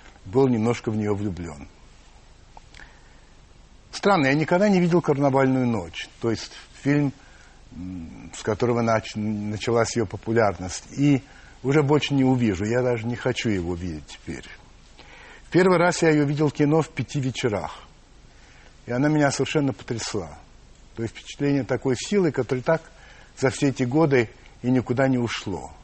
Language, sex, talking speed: Russian, male, 145 wpm